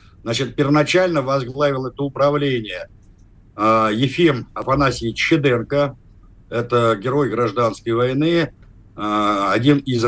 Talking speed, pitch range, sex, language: 95 wpm, 110-140 Hz, male, Russian